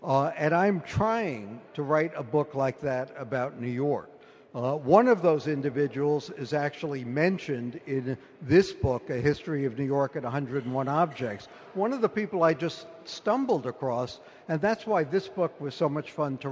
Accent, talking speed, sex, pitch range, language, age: American, 180 wpm, male, 145-175 Hz, English, 60-79